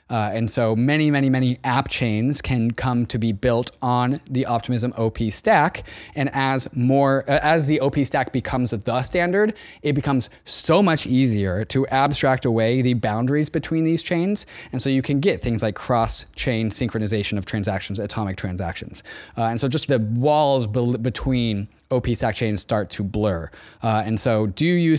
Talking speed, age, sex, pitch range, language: 180 wpm, 20-39, male, 110-135 Hz, English